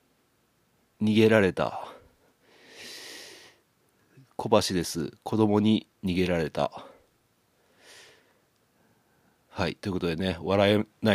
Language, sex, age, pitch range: Japanese, male, 40-59, 95-135 Hz